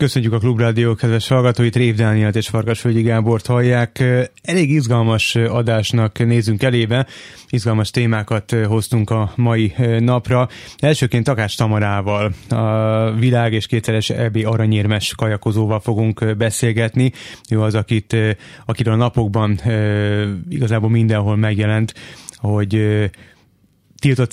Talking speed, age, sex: 115 wpm, 30-49, male